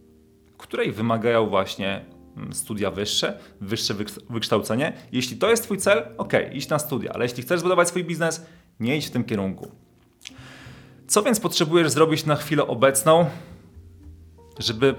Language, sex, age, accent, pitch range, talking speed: Polish, male, 30-49, native, 105-145 Hz, 145 wpm